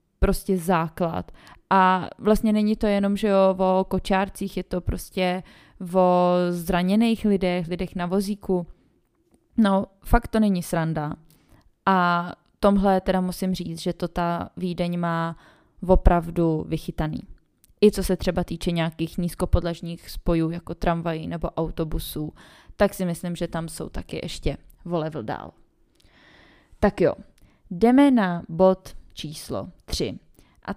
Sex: female